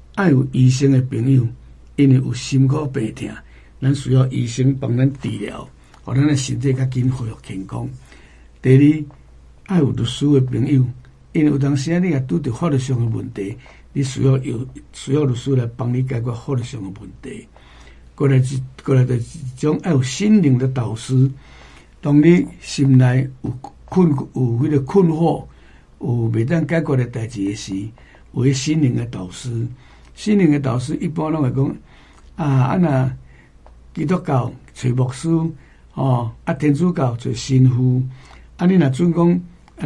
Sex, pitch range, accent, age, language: male, 120-150 Hz, American, 60-79, Chinese